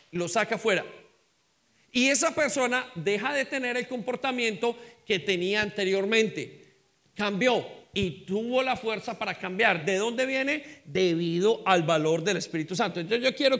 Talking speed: 145 wpm